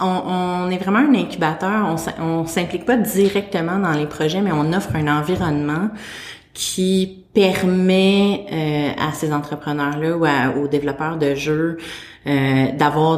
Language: French